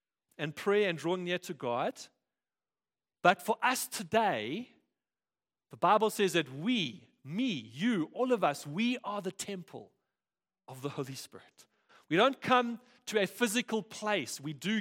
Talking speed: 155 wpm